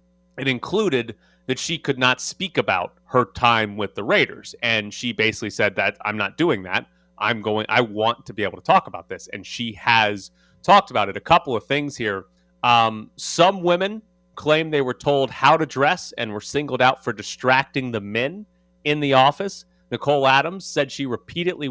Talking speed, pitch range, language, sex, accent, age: 195 wpm, 110-145 Hz, English, male, American, 30-49